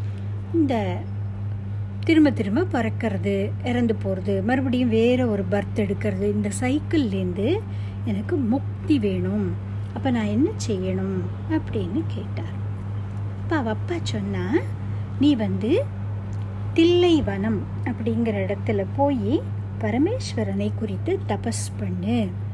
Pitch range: 100-110 Hz